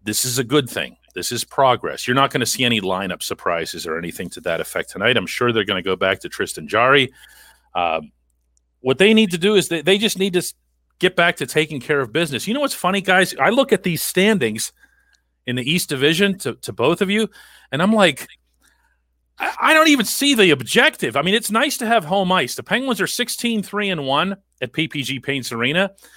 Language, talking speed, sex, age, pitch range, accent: English, 220 wpm, male, 40-59, 135-215 Hz, American